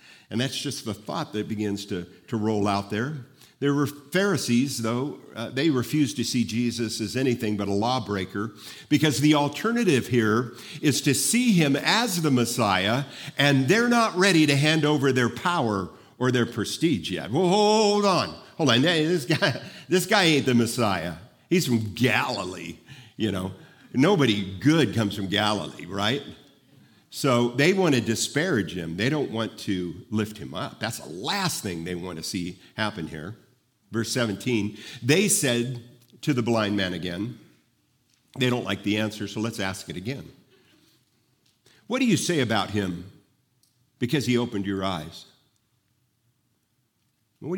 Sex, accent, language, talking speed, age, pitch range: male, American, English, 160 wpm, 50-69, 105-145 Hz